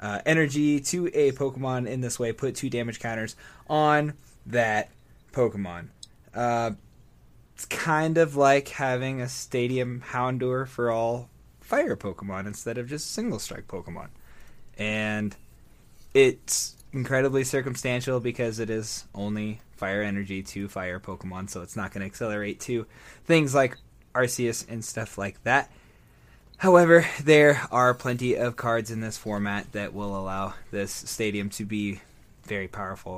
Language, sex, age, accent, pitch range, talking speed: English, male, 20-39, American, 100-125 Hz, 145 wpm